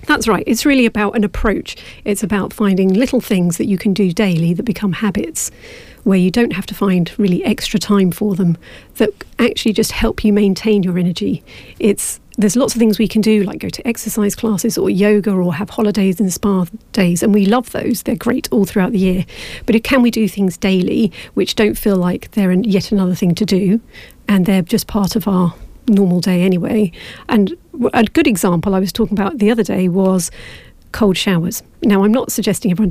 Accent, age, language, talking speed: British, 40-59, English, 210 wpm